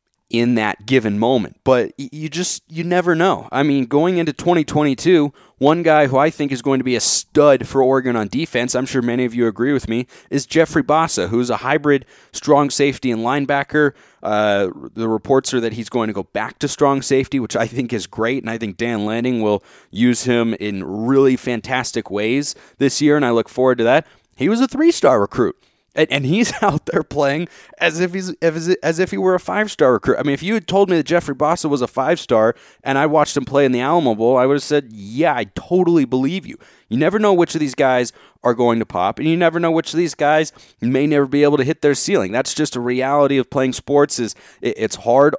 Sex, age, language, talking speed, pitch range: male, 20-39, English, 235 wpm, 120-155 Hz